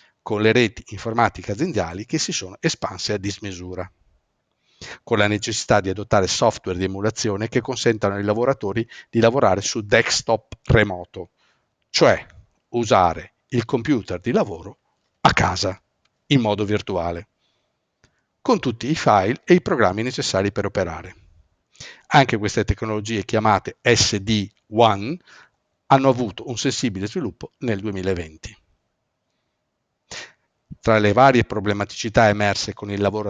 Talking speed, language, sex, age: 125 wpm, Italian, male, 50-69